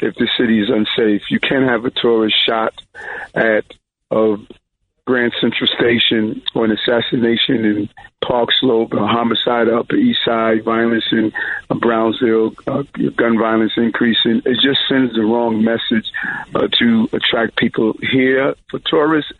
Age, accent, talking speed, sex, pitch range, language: 50-69, American, 150 wpm, male, 115-130 Hz, English